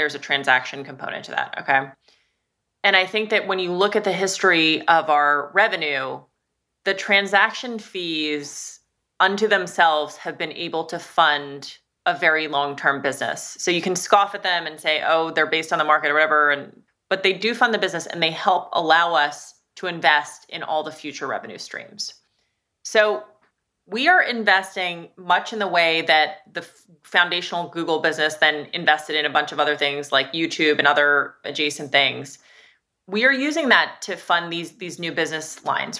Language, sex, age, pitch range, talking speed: English, female, 30-49, 150-190 Hz, 180 wpm